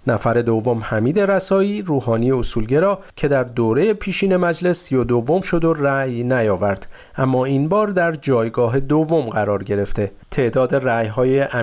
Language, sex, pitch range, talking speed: Persian, male, 120-175 Hz, 150 wpm